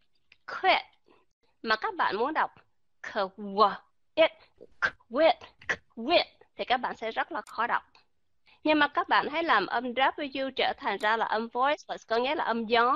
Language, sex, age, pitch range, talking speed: Vietnamese, female, 20-39, 230-320 Hz, 170 wpm